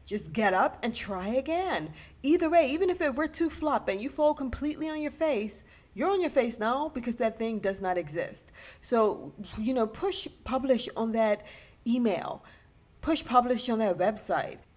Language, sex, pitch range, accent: English, female, 200-260 Hz, American